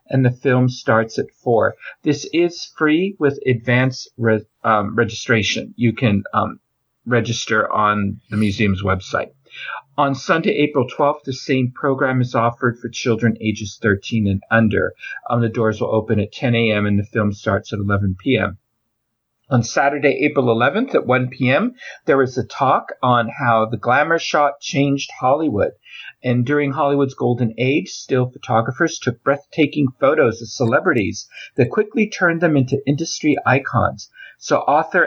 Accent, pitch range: American, 115-140 Hz